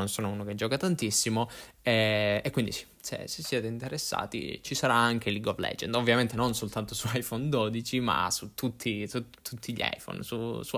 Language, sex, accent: Italian, male, native